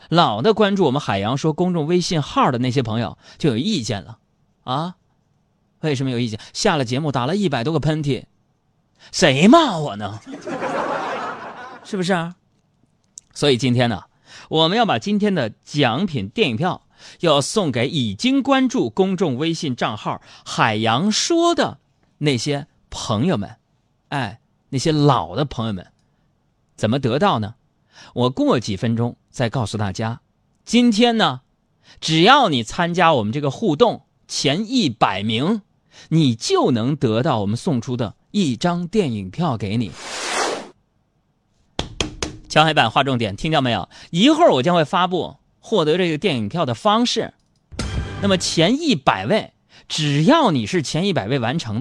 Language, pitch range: Chinese, 120-185 Hz